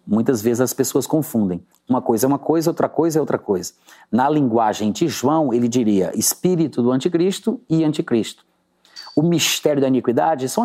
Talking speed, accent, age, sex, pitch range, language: 175 wpm, Brazilian, 30-49, male, 125-165 Hz, Portuguese